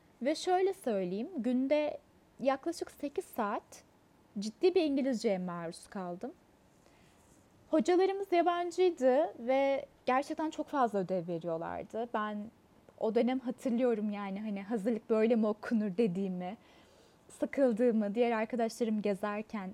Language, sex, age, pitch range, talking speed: Turkish, female, 20-39, 210-295 Hz, 105 wpm